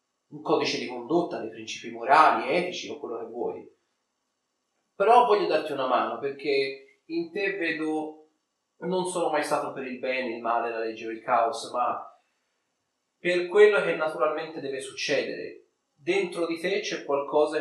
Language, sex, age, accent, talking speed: Italian, male, 30-49, native, 160 wpm